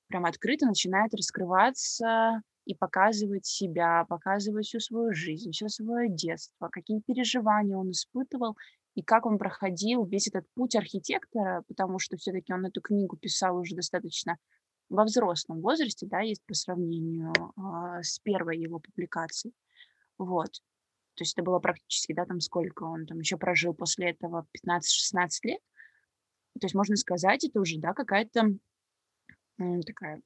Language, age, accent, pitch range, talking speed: Russian, 20-39, native, 180-210 Hz, 145 wpm